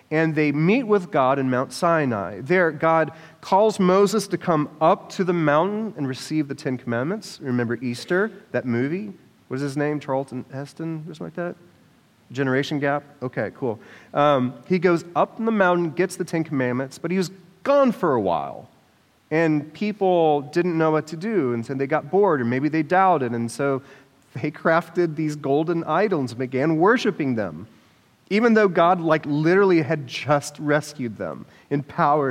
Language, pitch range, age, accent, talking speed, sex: English, 140-185 Hz, 30-49, American, 180 wpm, male